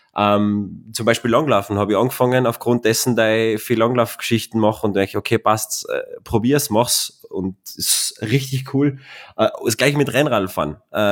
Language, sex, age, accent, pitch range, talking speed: German, male, 20-39, German, 105-125 Hz, 155 wpm